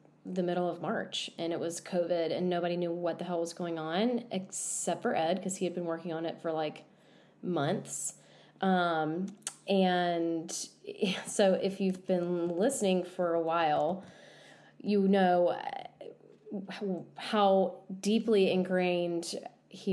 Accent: American